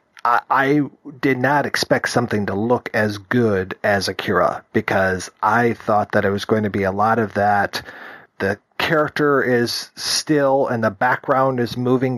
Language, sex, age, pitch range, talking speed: English, male, 40-59, 105-125 Hz, 160 wpm